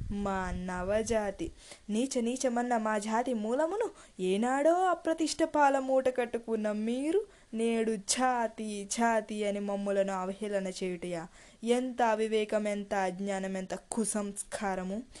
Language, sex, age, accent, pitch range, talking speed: Telugu, female, 20-39, native, 220-285 Hz, 100 wpm